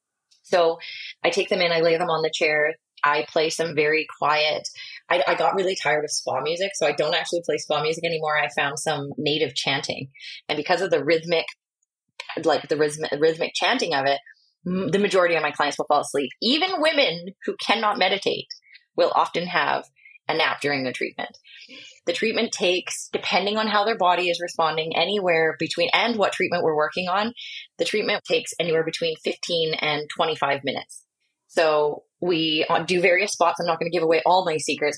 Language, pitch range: English, 150-180 Hz